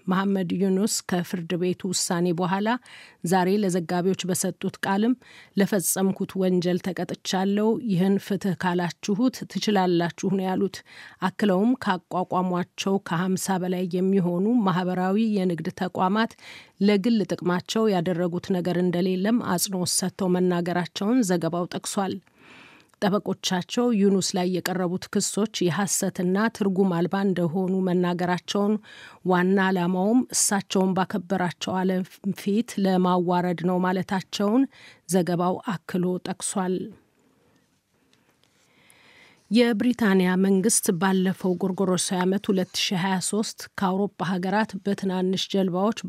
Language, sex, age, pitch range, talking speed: Amharic, female, 30-49, 180-200 Hz, 90 wpm